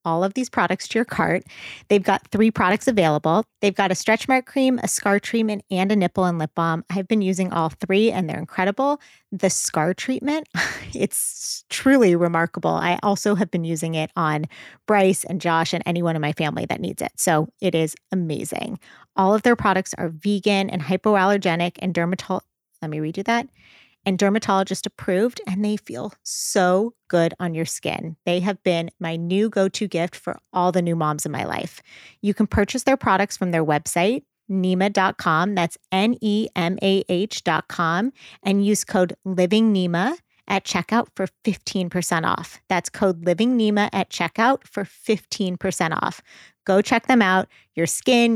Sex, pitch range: female, 170-210 Hz